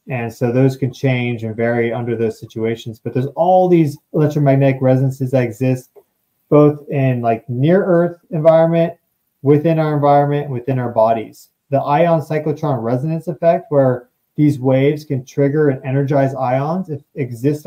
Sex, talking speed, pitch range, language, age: male, 150 wpm, 130-155 Hz, English, 30-49